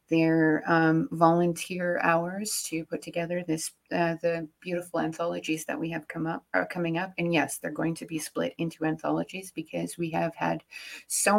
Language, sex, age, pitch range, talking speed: English, female, 30-49, 160-175 Hz, 180 wpm